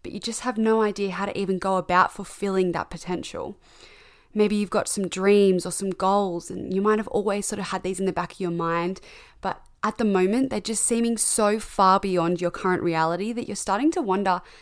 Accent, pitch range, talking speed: Australian, 180-225 Hz, 225 wpm